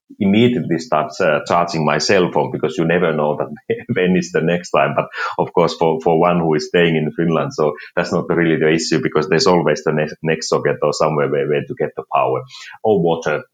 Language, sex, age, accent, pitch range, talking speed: Finnish, male, 30-49, native, 80-115 Hz, 225 wpm